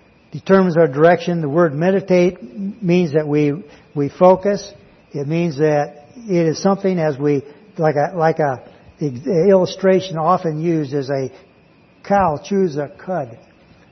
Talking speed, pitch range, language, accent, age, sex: 140 wpm, 150-185 Hz, English, American, 60-79, male